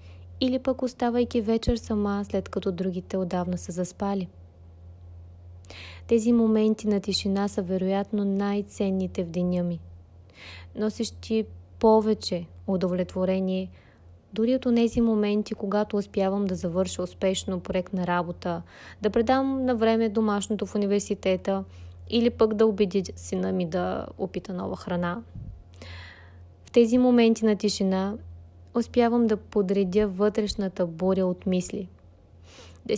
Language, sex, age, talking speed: Bulgarian, female, 20-39, 120 wpm